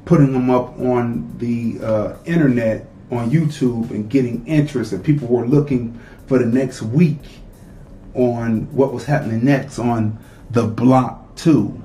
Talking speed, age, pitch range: 145 wpm, 30-49, 110-145 Hz